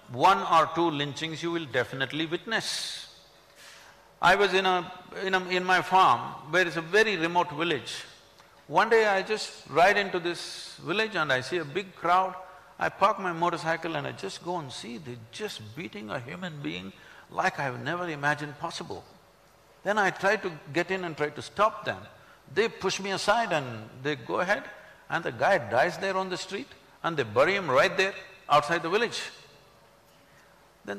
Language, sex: English, male